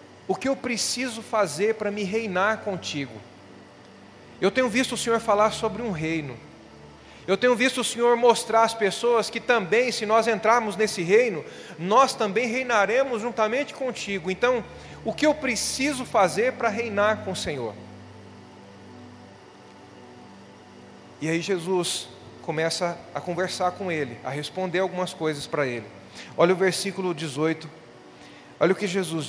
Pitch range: 140-215 Hz